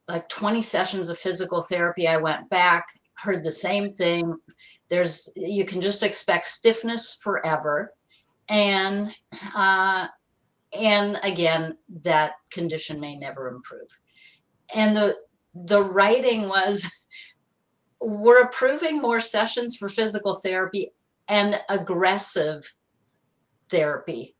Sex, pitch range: female, 170-220 Hz